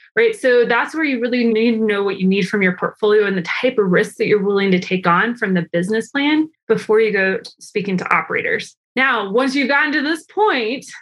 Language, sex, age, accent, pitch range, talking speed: English, female, 20-39, American, 200-245 Hz, 235 wpm